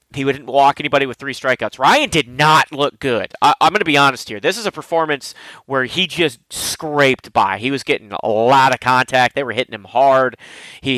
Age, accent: 30-49, American